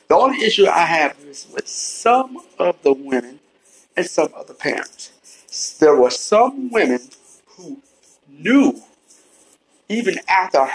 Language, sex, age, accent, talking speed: English, male, 60-79, American, 135 wpm